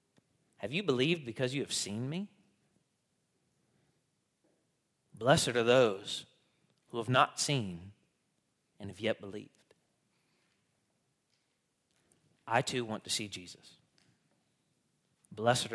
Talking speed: 100 wpm